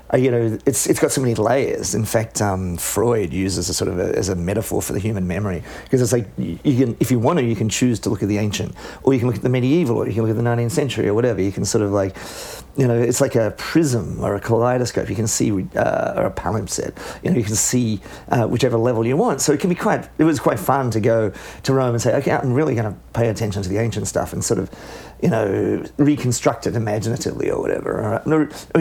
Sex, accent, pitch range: male, Australian, 105-130 Hz